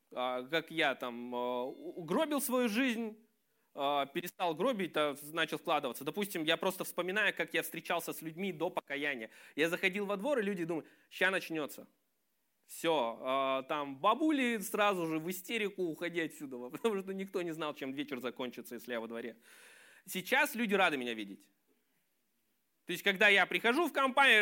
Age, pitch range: 20-39, 155-230 Hz